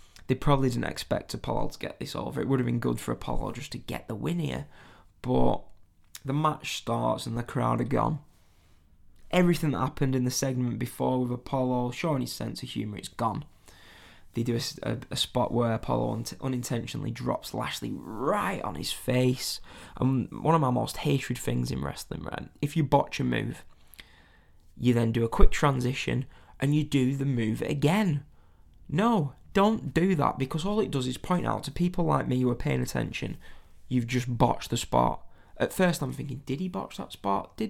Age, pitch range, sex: 10-29, 115-155 Hz, male